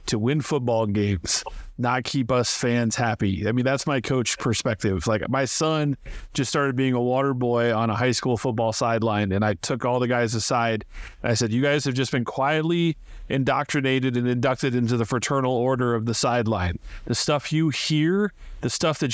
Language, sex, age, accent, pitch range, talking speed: English, male, 30-49, American, 115-145 Hz, 195 wpm